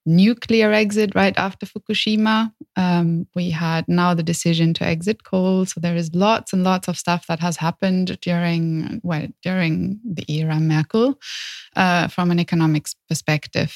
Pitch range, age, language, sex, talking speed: 170-195 Hz, 20-39, English, female, 155 wpm